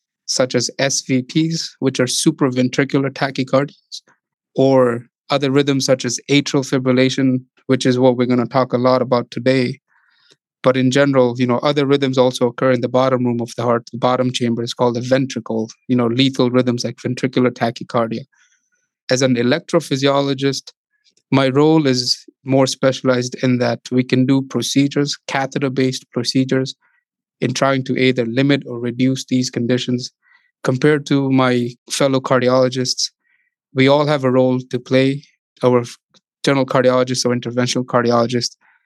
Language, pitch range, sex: English, 125-135 Hz, male